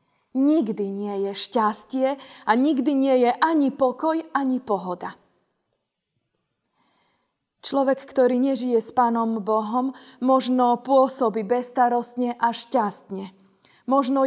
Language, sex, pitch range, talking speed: Slovak, female, 220-270 Hz, 100 wpm